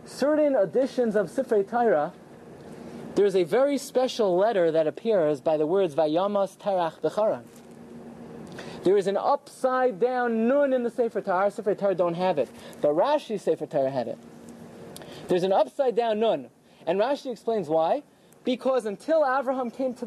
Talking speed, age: 165 wpm, 30-49